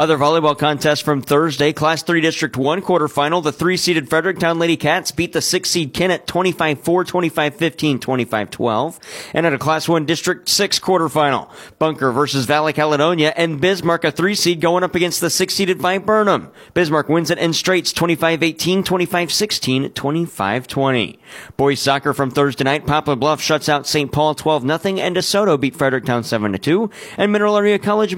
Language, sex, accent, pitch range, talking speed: English, male, American, 145-180 Hz, 155 wpm